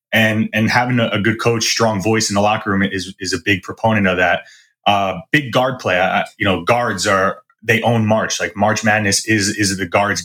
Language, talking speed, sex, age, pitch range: English, 230 wpm, male, 20-39, 100-115 Hz